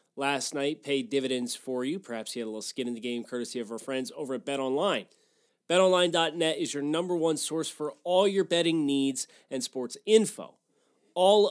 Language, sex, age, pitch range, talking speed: English, male, 30-49, 130-175 Hz, 195 wpm